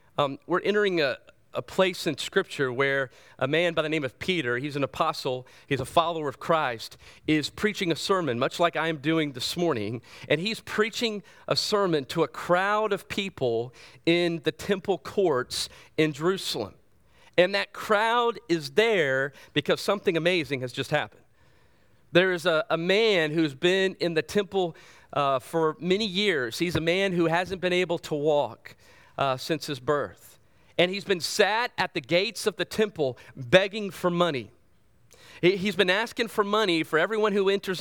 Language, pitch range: English, 155-205 Hz